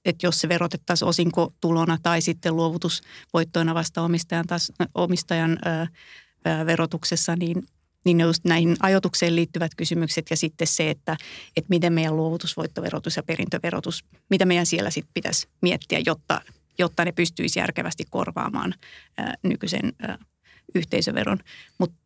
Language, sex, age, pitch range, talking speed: Finnish, female, 30-49, 165-175 Hz, 120 wpm